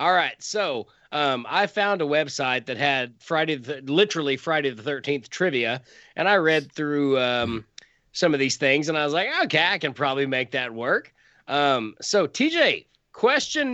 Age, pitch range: 30-49, 135-195 Hz